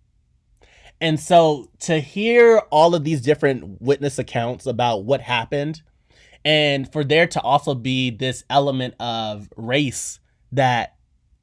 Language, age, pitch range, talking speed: English, 20-39, 115-145 Hz, 125 wpm